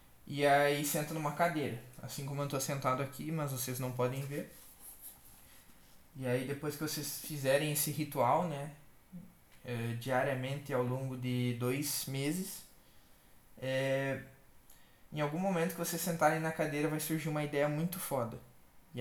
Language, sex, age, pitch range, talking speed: Portuguese, male, 20-39, 135-170 Hz, 150 wpm